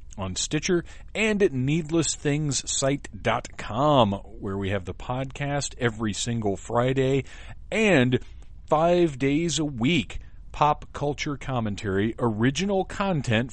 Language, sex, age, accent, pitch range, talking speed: English, male, 40-59, American, 95-125 Hz, 100 wpm